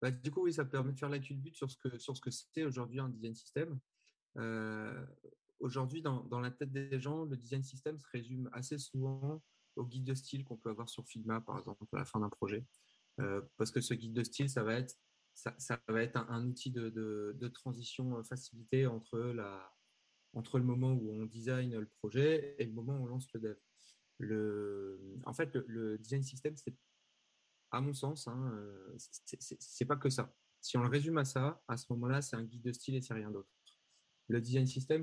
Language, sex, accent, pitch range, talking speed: French, male, French, 115-135 Hz, 220 wpm